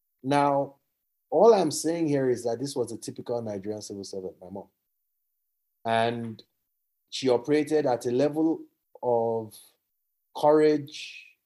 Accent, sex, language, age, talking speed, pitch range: Jamaican, male, English, 30-49, 125 wpm, 110-140 Hz